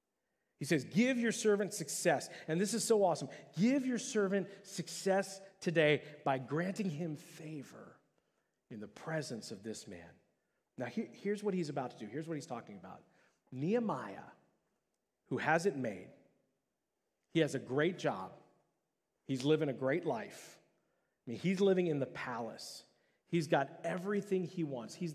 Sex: male